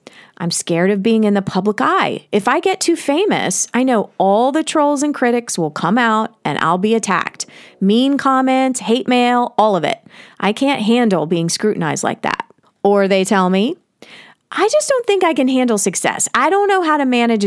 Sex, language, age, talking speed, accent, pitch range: female, English, 30-49, 205 wpm, American, 185-265 Hz